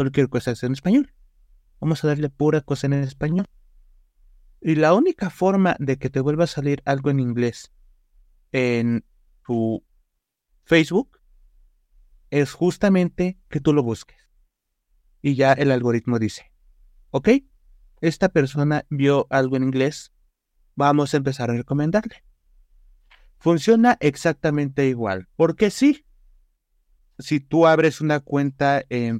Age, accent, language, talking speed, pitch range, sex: 30-49, Mexican, Spanish, 130 wpm, 115-150 Hz, male